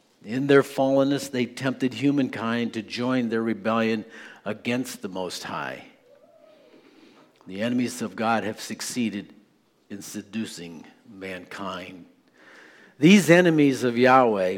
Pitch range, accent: 110-130 Hz, American